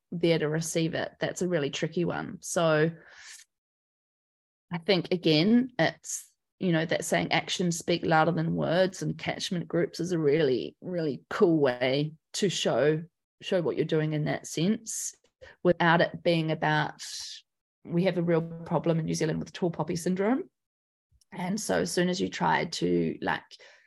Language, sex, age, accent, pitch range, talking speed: English, female, 20-39, Australian, 160-190 Hz, 165 wpm